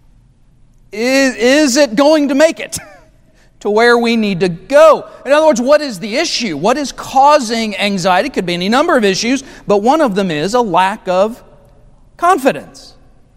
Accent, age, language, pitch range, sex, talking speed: American, 40-59, English, 200-265 Hz, male, 175 wpm